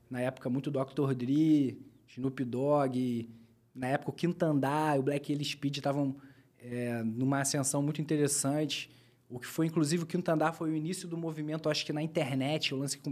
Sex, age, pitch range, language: male, 20-39, 130-155 Hz, Portuguese